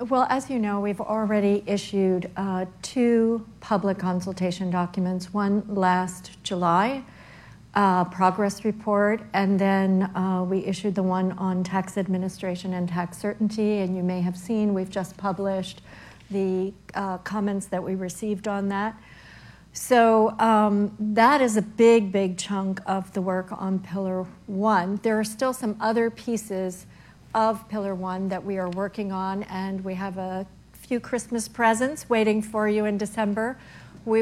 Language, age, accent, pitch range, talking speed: English, 50-69, American, 190-215 Hz, 155 wpm